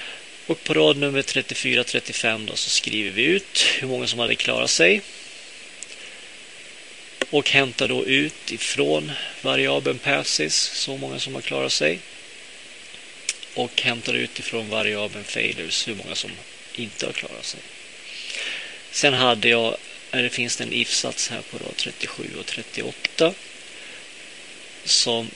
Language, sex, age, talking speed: Swedish, male, 30-49, 130 wpm